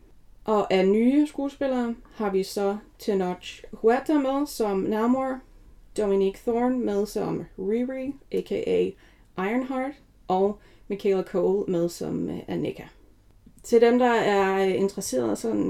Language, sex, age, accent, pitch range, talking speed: Danish, female, 30-49, native, 195-275 Hz, 115 wpm